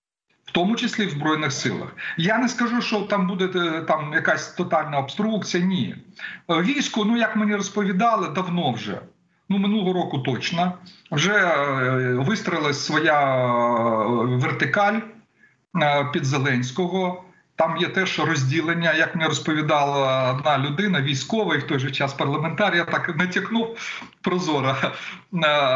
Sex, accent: male, native